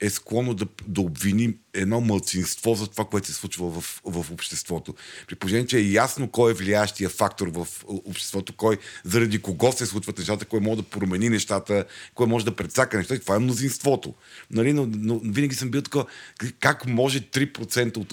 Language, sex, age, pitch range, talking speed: Bulgarian, male, 40-59, 100-120 Hz, 180 wpm